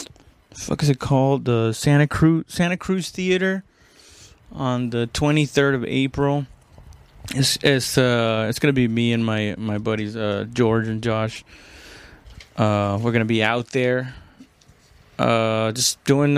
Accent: American